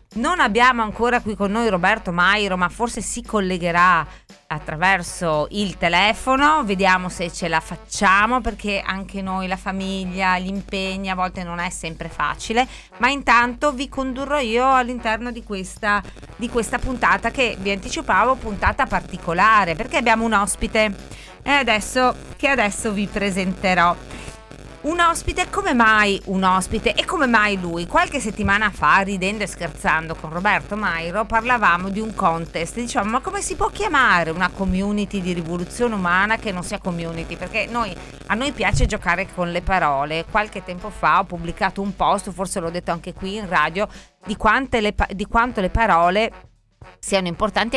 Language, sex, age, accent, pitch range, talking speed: Italian, female, 30-49, native, 180-230 Hz, 160 wpm